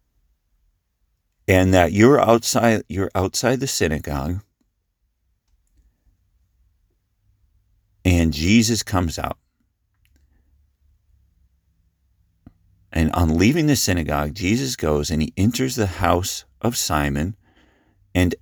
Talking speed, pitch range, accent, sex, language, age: 90 wpm, 75-95 Hz, American, male, English, 50-69